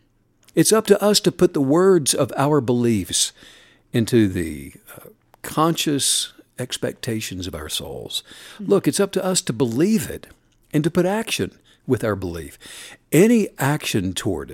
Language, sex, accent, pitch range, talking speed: English, male, American, 120-190 Hz, 155 wpm